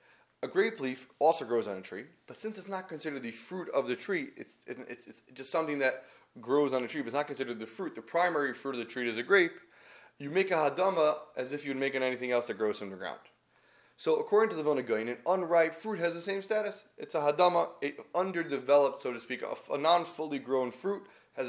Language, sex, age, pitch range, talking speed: English, male, 20-39, 130-190 Hz, 235 wpm